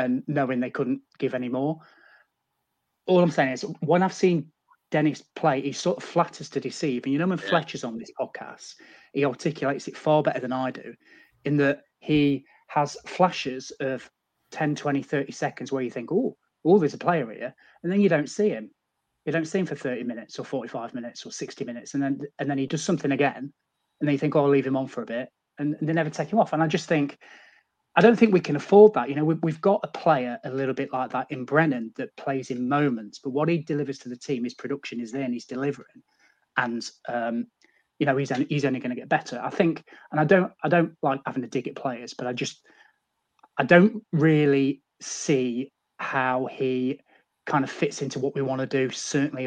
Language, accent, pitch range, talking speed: English, British, 130-160 Hz, 230 wpm